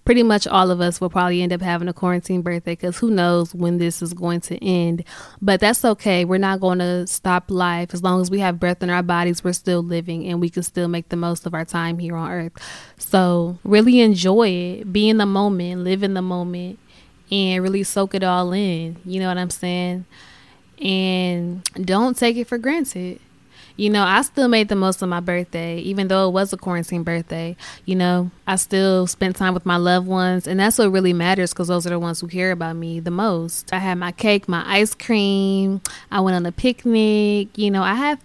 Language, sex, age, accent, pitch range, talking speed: English, female, 10-29, American, 175-200 Hz, 225 wpm